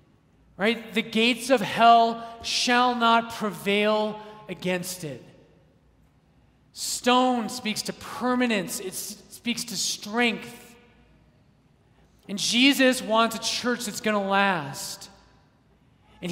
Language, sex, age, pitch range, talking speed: English, male, 30-49, 185-230 Hz, 105 wpm